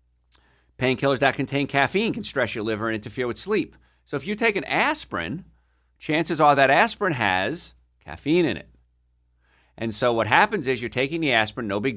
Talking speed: 185 wpm